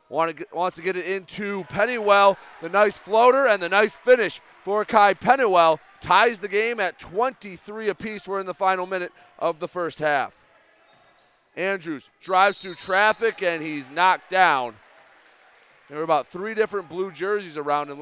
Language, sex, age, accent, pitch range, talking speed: English, male, 30-49, American, 140-195 Hz, 160 wpm